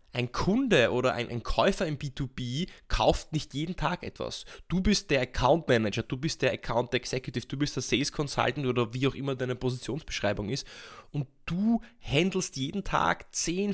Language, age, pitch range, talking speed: German, 20-39, 125-170 Hz, 175 wpm